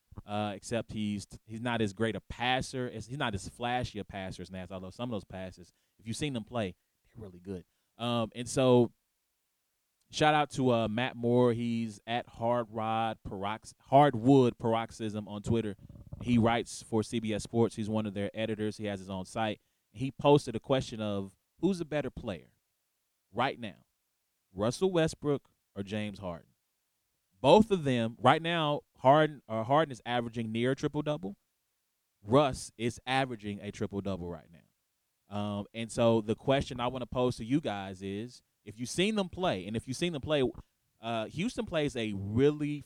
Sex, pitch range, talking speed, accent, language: male, 105-130 Hz, 180 wpm, American, English